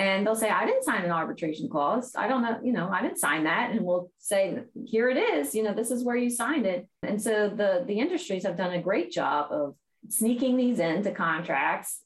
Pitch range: 165-225 Hz